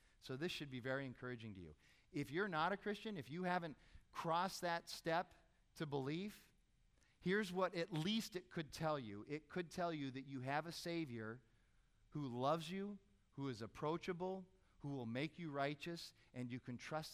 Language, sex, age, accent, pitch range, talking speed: English, male, 40-59, American, 115-165 Hz, 185 wpm